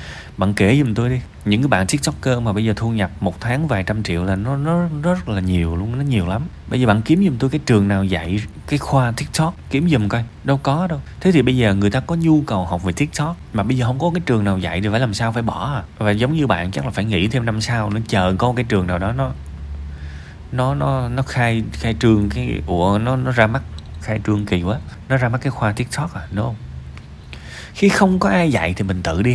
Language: Vietnamese